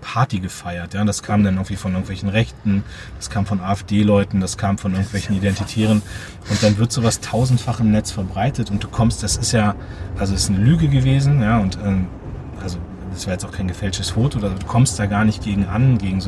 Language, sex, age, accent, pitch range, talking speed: German, male, 30-49, German, 95-105 Hz, 220 wpm